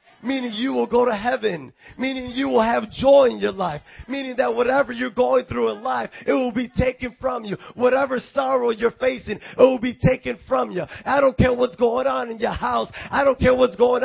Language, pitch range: English, 235-275 Hz